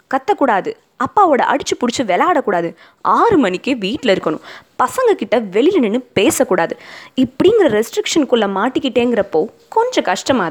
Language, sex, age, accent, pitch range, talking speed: Tamil, female, 20-39, native, 220-350 Hz, 105 wpm